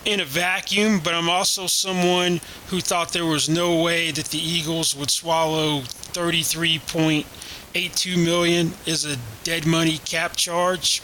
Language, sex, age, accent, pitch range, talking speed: English, male, 30-49, American, 150-170 Hz, 140 wpm